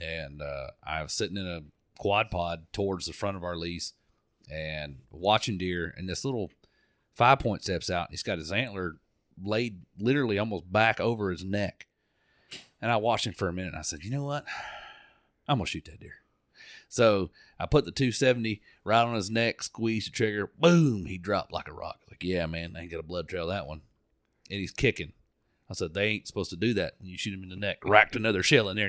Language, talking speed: English, 225 wpm